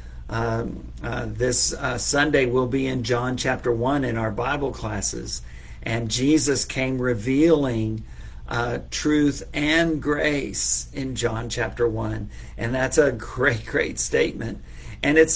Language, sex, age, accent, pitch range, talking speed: English, male, 50-69, American, 110-135 Hz, 135 wpm